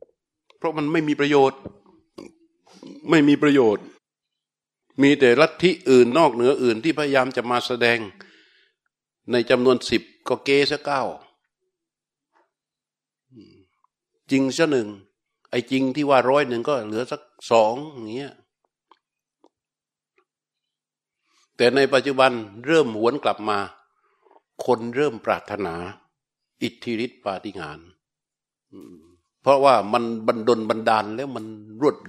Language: Thai